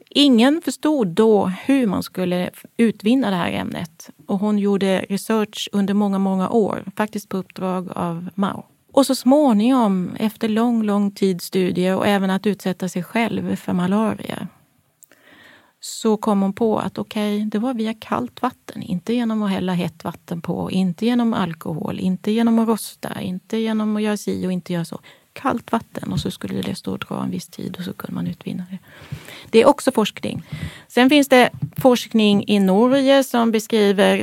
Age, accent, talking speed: 30-49, Swedish, 180 wpm